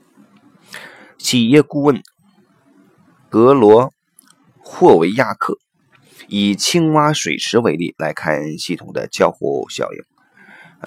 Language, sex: Chinese, male